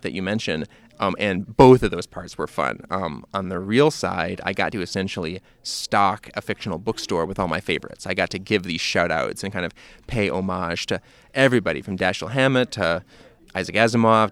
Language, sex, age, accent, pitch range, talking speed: English, male, 30-49, American, 95-125 Hz, 200 wpm